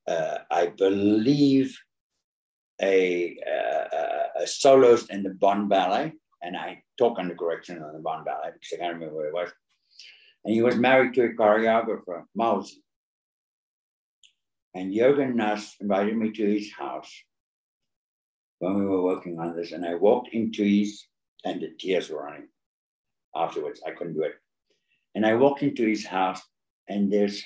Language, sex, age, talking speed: English, male, 60-79, 160 wpm